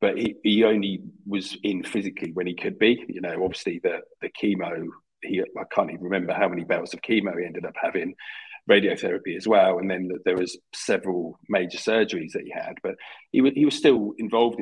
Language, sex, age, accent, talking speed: English, male, 40-59, British, 215 wpm